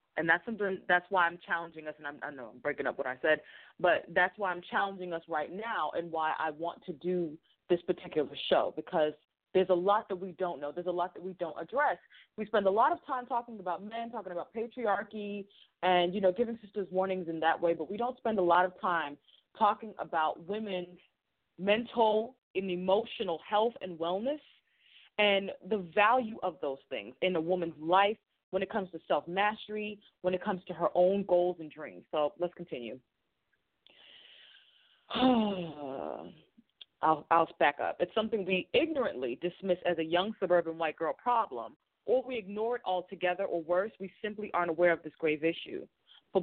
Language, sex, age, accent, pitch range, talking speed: English, female, 20-39, American, 170-215 Hz, 185 wpm